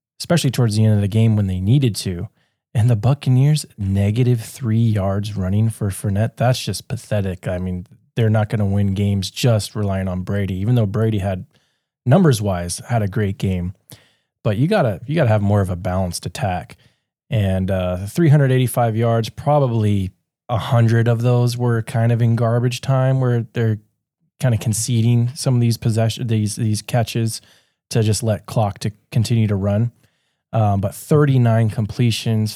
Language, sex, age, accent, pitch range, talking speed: English, male, 20-39, American, 100-125 Hz, 170 wpm